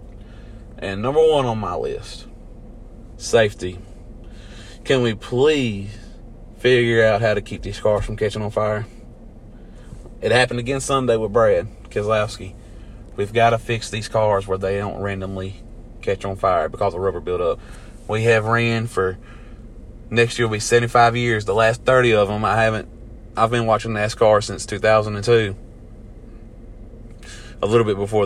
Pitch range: 100-115 Hz